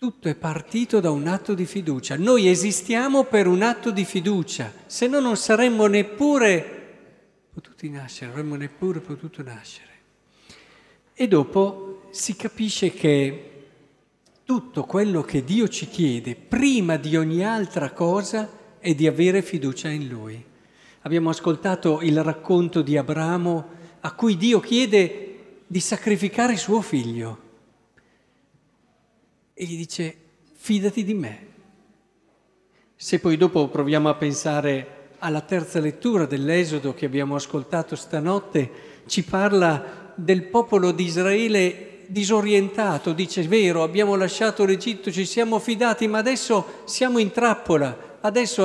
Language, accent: Italian, native